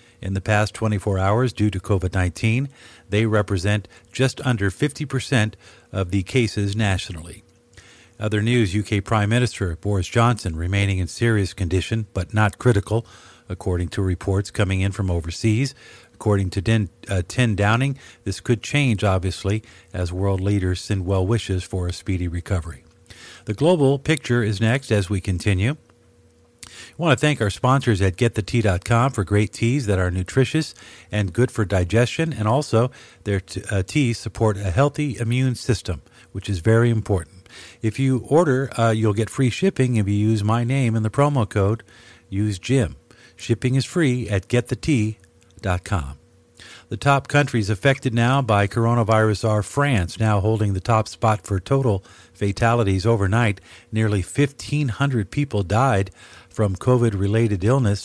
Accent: American